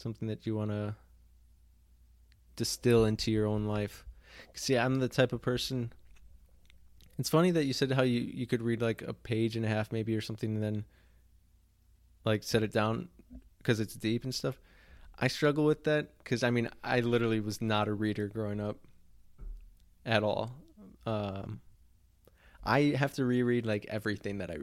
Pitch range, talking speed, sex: 90-115 Hz, 175 wpm, male